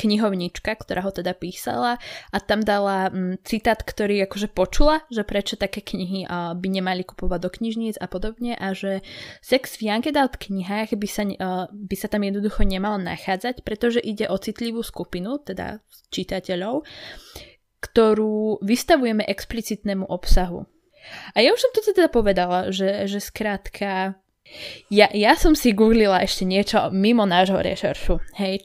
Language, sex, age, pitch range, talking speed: Slovak, female, 20-39, 190-230 Hz, 145 wpm